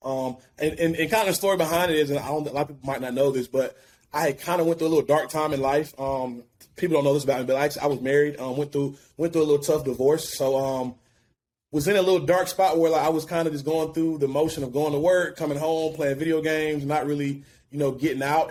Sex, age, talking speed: male, 20-39, 290 wpm